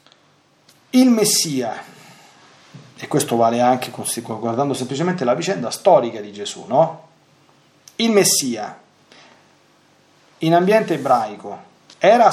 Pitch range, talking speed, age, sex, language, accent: 120-165 Hz, 95 wpm, 40-59, male, Italian, native